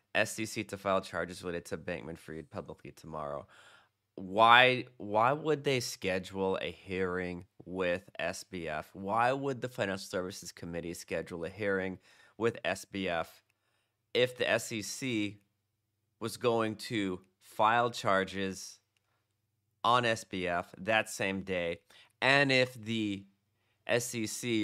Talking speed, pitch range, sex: 115 wpm, 95-115 Hz, male